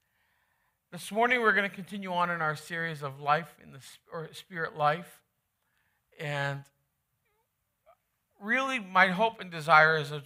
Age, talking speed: 50-69, 150 wpm